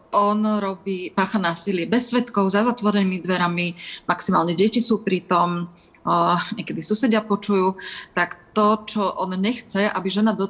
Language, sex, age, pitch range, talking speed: Slovak, female, 30-49, 180-205 Hz, 145 wpm